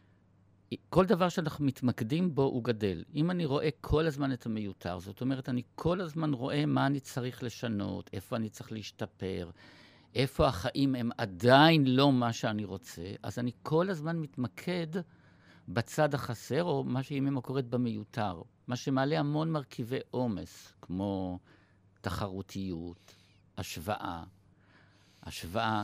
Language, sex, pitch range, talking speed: Hebrew, male, 95-155 Hz, 135 wpm